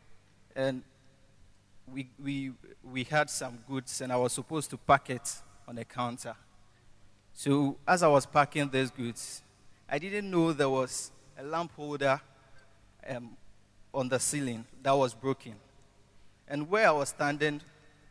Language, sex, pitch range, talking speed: English, male, 110-150 Hz, 145 wpm